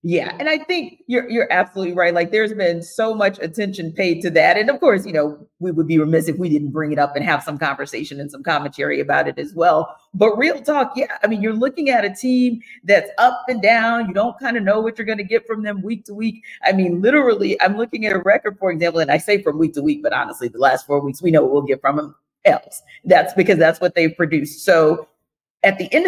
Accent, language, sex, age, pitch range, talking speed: American, English, female, 40-59, 155-230 Hz, 260 wpm